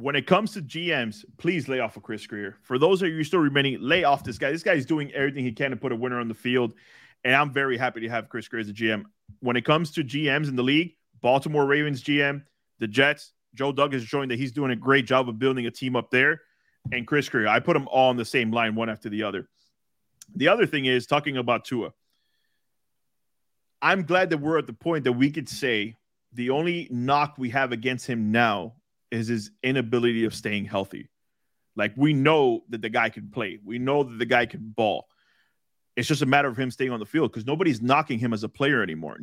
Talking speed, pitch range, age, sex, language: 235 wpm, 115-145 Hz, 30-49, male, English